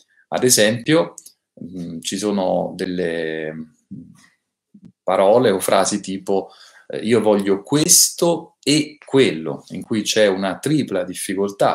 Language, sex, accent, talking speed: Italian, male, native, 105 wpm